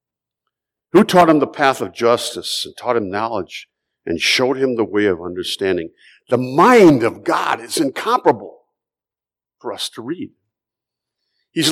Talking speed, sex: 150 wpm, male